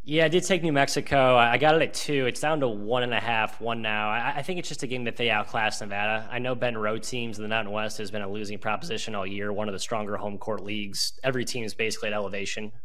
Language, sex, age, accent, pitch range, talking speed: English, male, 20-39, American, 105-120 Hz, 275 wpm